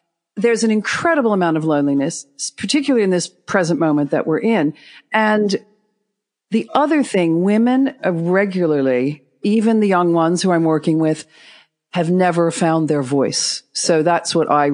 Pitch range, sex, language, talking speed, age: 145-185 Hz, female, English, 150 wpm, 50-69